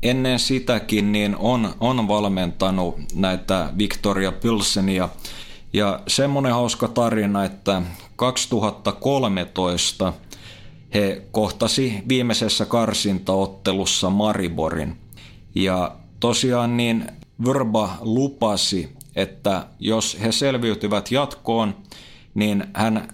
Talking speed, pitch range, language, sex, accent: 85 wpm, 100-120 Hz, Finnish, male, native